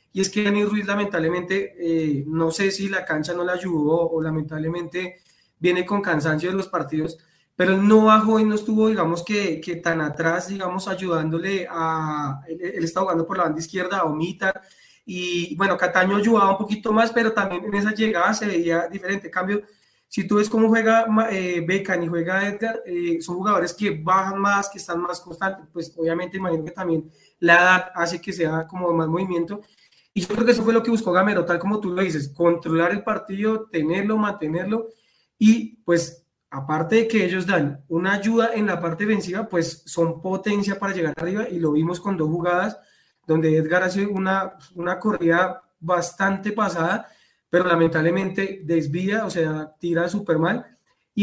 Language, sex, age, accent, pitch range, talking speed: Spanish, male, 20-39, Colombian, 165-205 Hz, 185 wpm